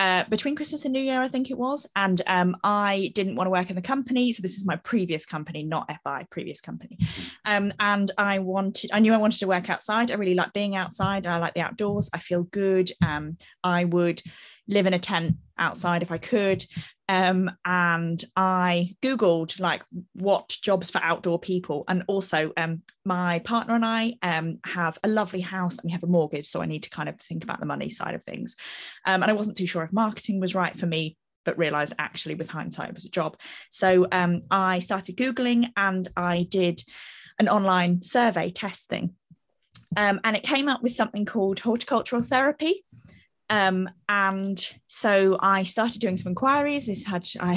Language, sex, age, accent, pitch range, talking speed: English, female, 20-39, British, 175-210 Hz, 200 wpm